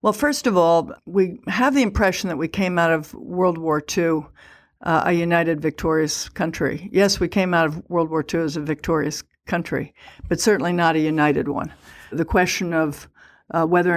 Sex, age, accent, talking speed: female, 60-79, American, 190 wpm